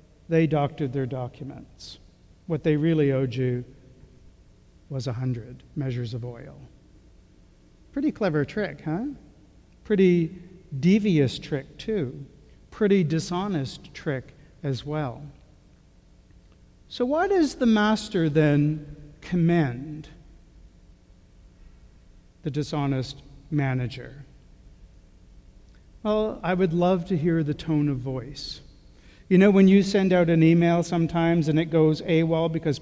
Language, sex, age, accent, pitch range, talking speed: English, male, 60-79, American, 135-180 Hz, 110 wpm